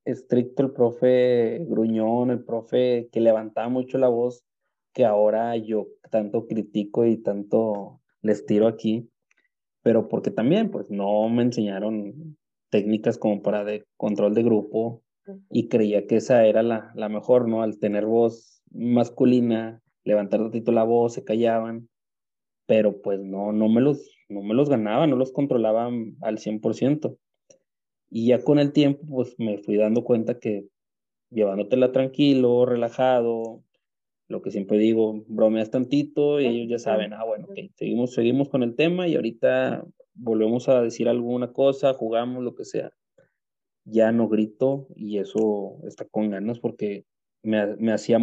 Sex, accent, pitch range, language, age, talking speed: male, Mexican, 105-125 Hz, Spanish, 20-39, 150 wpm